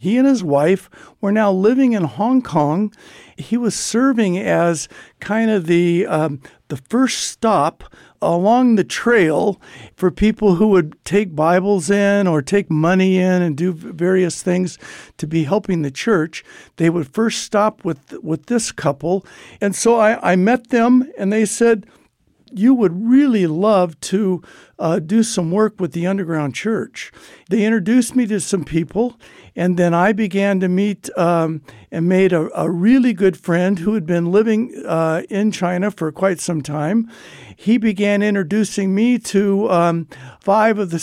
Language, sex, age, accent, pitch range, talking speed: English, male, 60-79, American, 175-220 Hz, 165 wpm